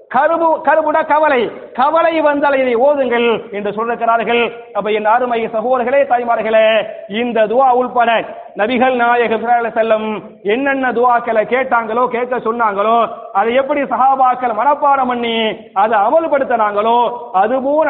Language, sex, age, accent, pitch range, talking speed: English, male, 30-49, Indian, 220-260 Hz, 135 wpm